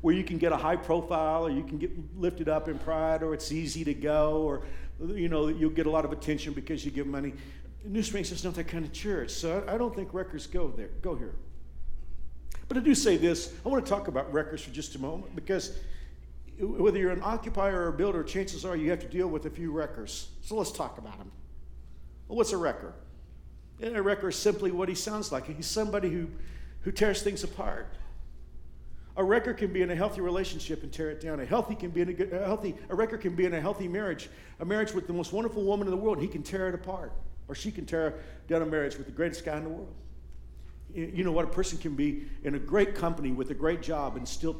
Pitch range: 145-195 Hz